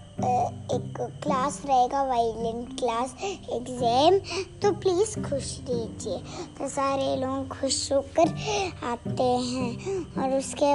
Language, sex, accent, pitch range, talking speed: Hindi, male, native, 250-295 Hz, 105 wpm